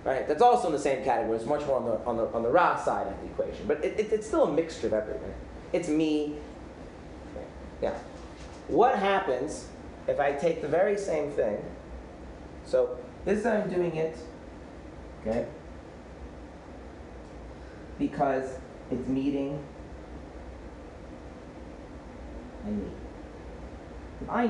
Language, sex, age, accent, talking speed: English, male, 30-49, American, 130 wpm